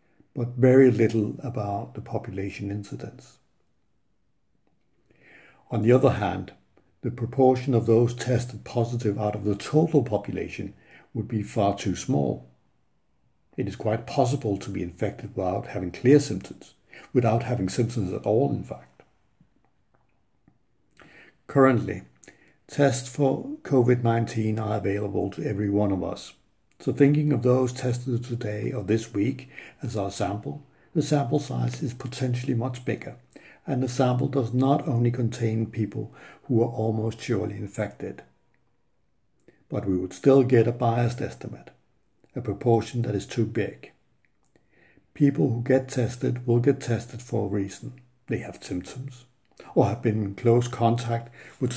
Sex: male